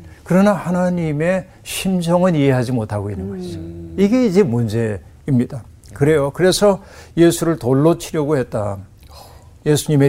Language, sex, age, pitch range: Korean, male, 60-79, 115-170 Hz